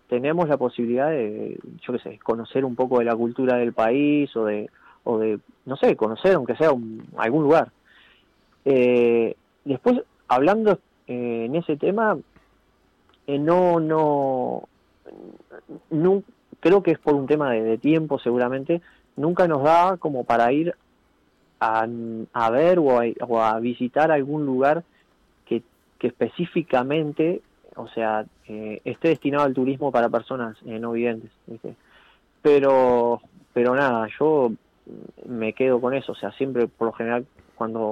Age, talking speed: 30-49, 150 wpm